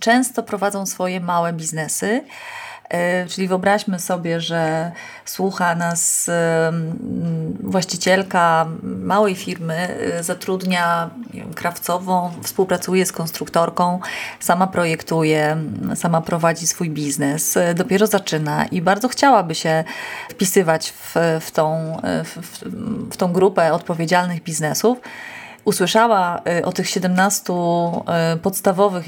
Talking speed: 95 wpm